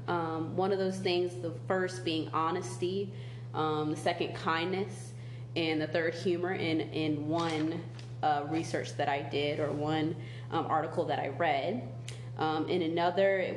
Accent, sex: American, female